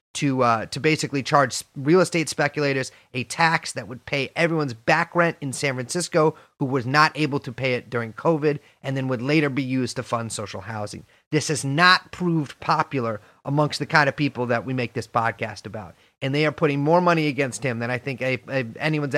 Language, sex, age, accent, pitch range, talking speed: English, male, 30-49, American, 125-165 Hz, 205 wpm